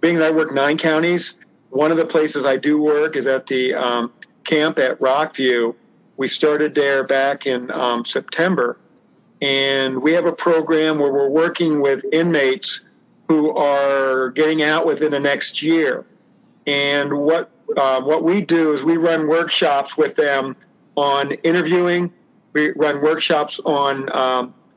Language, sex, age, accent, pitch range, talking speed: English, male, 50-69, American, 140-165 Hz, 155 wpm